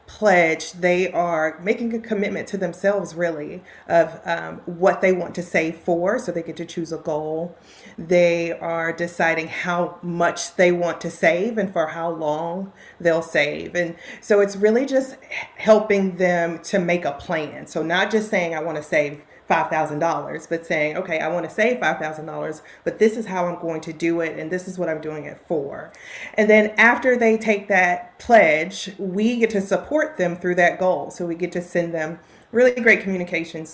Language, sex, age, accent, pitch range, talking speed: English, female, 30-49, American, 165-200 Hz, 190 wpm